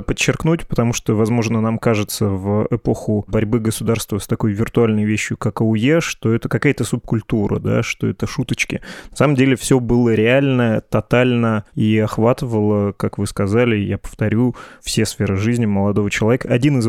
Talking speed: 160 wpm